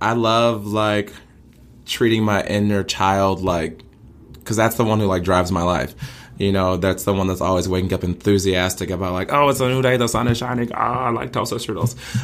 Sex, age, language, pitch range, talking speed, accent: male, 20-39, English, 90-110 Hz, 205 wpm, American